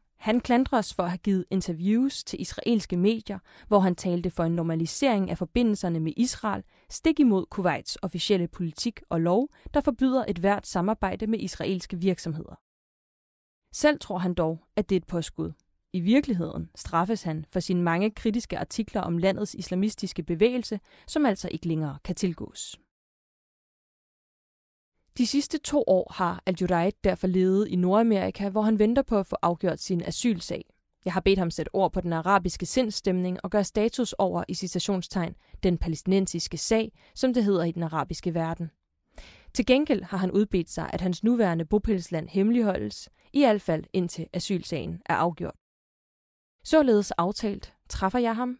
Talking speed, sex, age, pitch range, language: 165 wpm, female, 20-39, 175-220 Hz, Danish